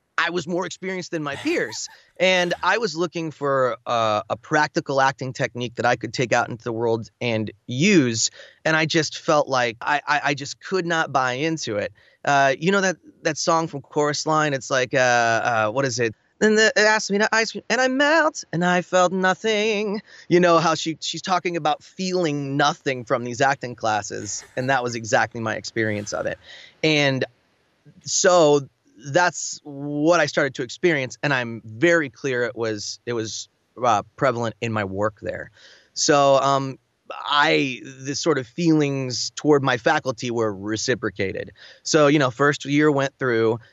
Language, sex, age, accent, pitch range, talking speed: English, male, 30-49, American, 120-160 Hz, 185 wpm